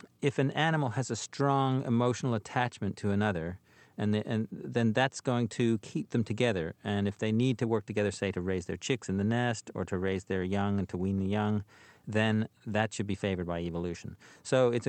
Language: English